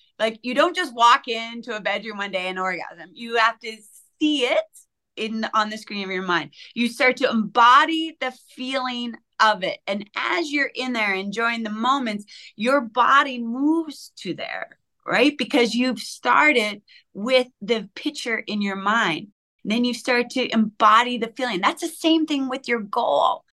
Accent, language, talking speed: American, English, 175 wpm